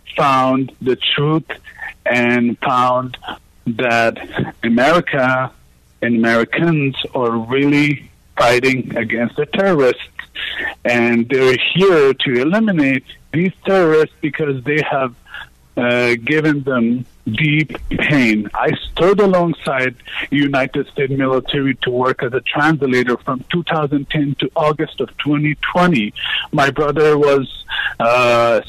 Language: English